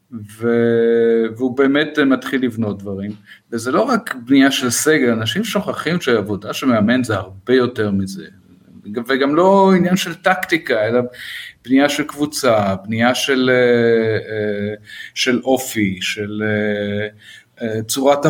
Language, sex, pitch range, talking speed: Hebrew, male, 115-150 Hz, 115 wpm